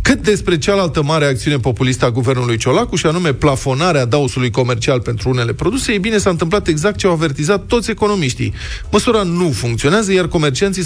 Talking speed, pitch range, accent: 175 wpm, 120-180 Hz, native